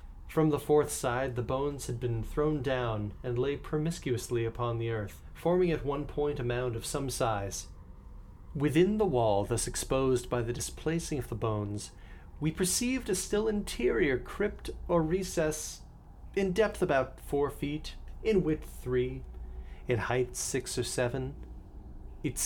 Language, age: English, 40-59